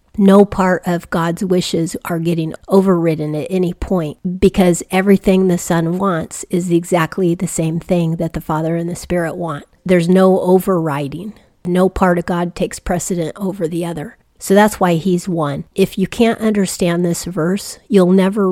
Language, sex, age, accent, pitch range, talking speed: English, female, 40-59, American, 165-185 Hz, 170 wpm